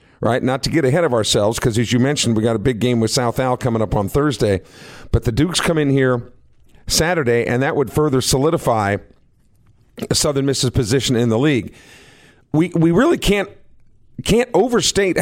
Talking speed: 185 wpm